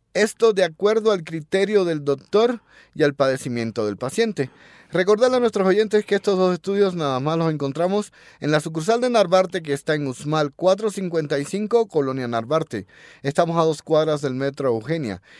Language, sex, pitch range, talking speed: Spanish, male, 140-195 Hz, 170 wpm